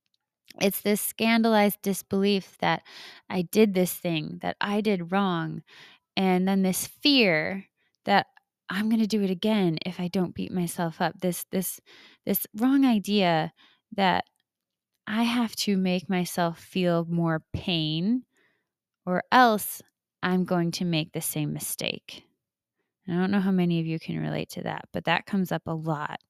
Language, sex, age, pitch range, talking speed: English, female, 20-39, 160-195 Hz, 160 wpm